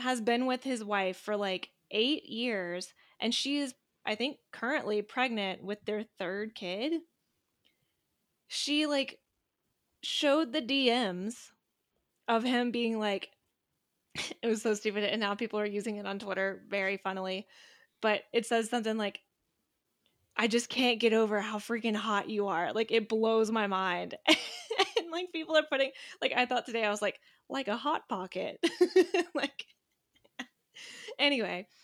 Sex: female